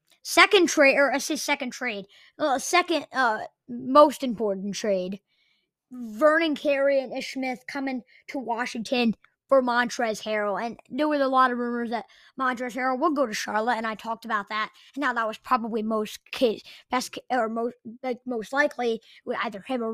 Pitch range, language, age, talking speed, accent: 225-280 Hz, English, 20-39, 180 wpm, American